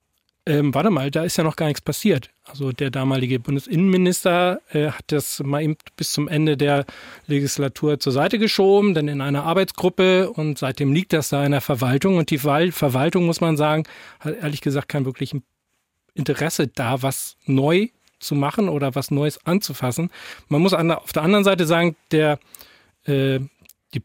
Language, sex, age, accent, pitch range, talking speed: German, male, 40-59, German, 140-165 Hz, 170 wpm